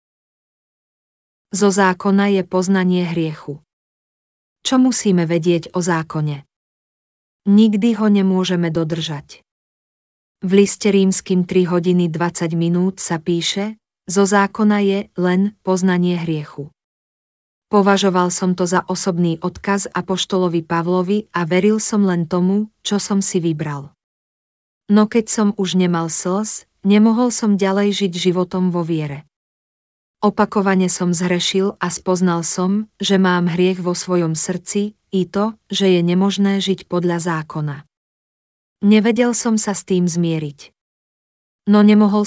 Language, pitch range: Slovak, 170-200 Hz